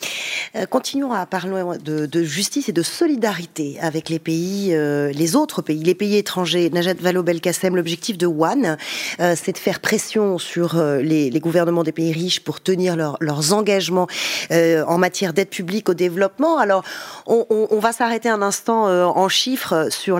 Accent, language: French, French